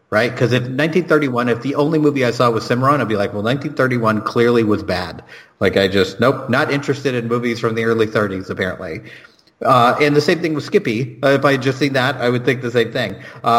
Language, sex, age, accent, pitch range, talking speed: English, male, 30-49, American, 110-145 Hz, 240 wpm